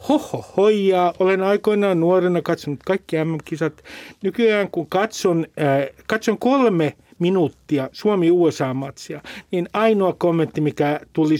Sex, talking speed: male, 110 wpm